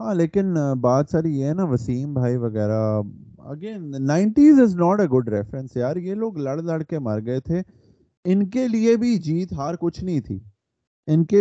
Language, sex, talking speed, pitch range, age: Urdu, male, 60 wpm, 120-165 Hz, 30-49